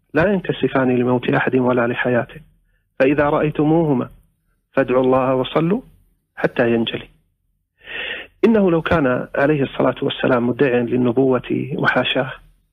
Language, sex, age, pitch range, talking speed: Arabic, male, 40-59, 125-160 Hz, 105 wpm